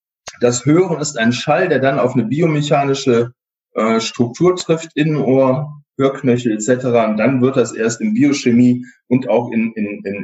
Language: German